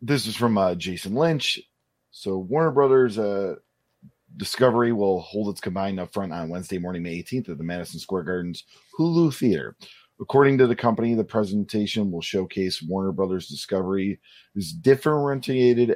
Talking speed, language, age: 150 wpm, English, 30-49